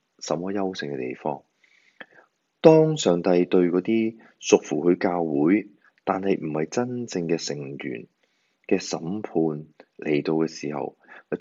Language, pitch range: Chinese, 75-100 Hz